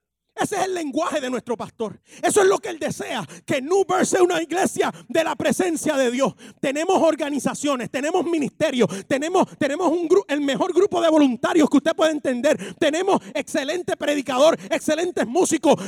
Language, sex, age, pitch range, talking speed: English, male, 30-49, 230-320 Hz, 175 wpm